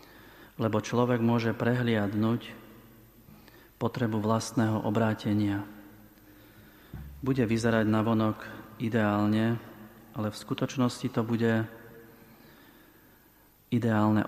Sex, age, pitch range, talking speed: male, 40-59, 110-120 Hz, 70 wpm